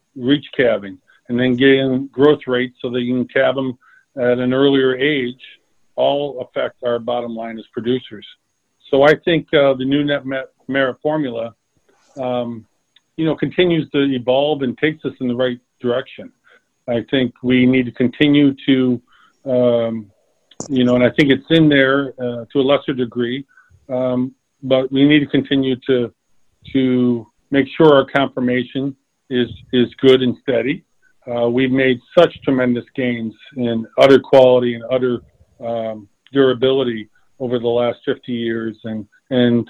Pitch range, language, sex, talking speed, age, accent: 120-140 Hz, English, male, 155 wpm, 50-69, American